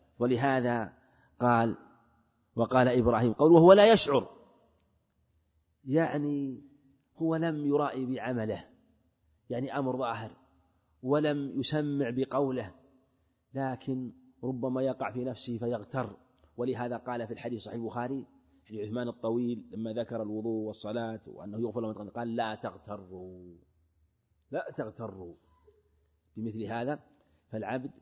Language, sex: Arabic, male